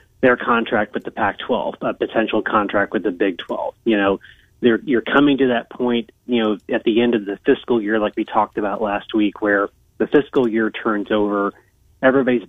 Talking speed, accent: 195 wpm, American